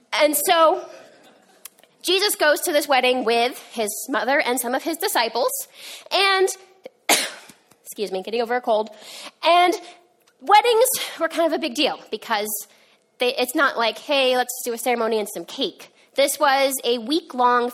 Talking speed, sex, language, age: 155 wpm, female, English, 20-39